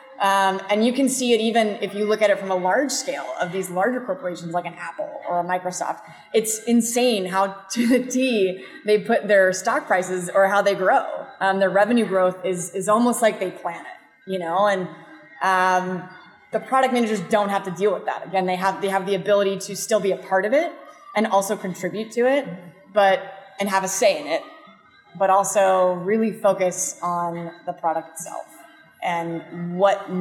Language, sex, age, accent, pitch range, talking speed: English, female, 20-39, American, 185-215 Hz, 200 wpm